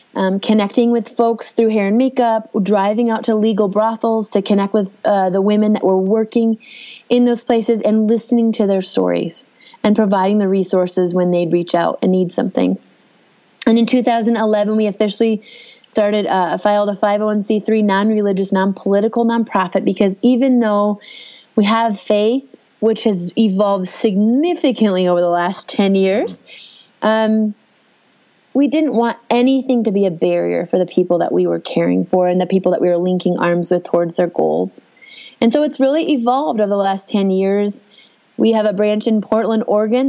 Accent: American